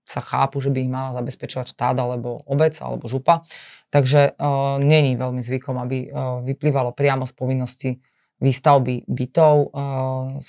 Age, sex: 20-39, female